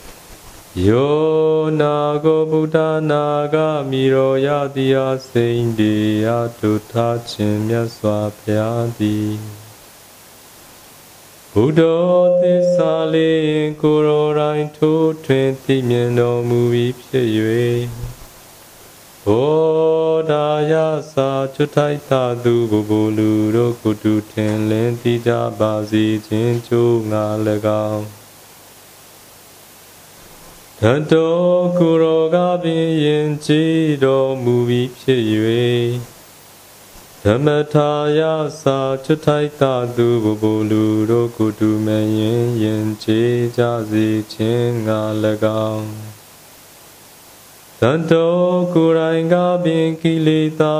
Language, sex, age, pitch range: Vietnamese, male, 30-49, 110-155 Hz